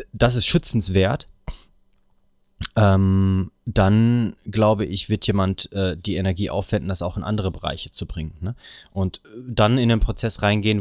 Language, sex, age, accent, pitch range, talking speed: German, male, 30-49, German, 95-115 Hz, 150 wpm